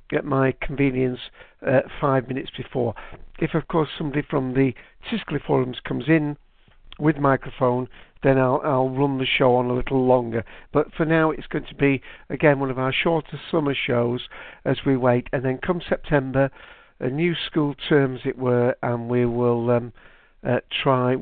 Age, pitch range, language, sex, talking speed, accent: 60-79, 125-150 Hz, English, male, 180 wpm, British